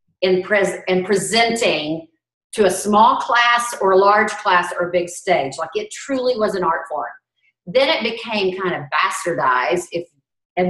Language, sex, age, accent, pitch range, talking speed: English, female, 40-59, American, 185-240 Hz, 170 wpm